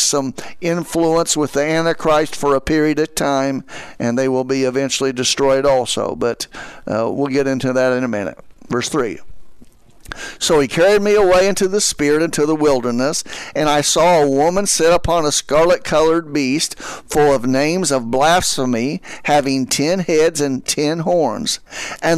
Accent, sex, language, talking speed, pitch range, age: American, male, English, 165 wpm, 140-170 Hz, 50-69